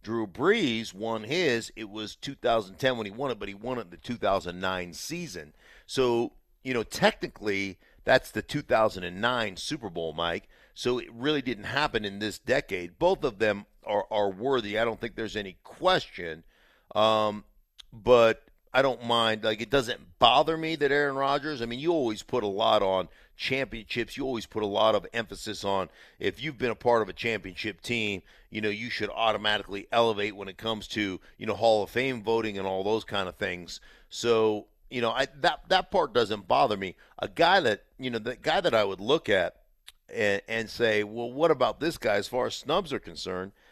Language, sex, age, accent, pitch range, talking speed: English, male, 50-69, American, 100-120 Hz, 200 wpm